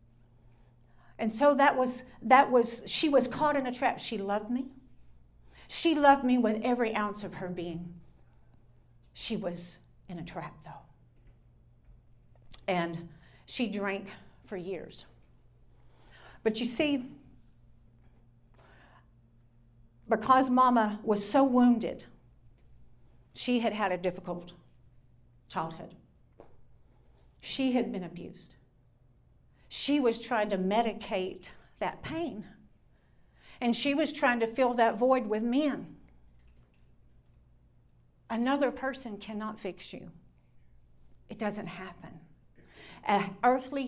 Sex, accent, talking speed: female, American, 110 wpm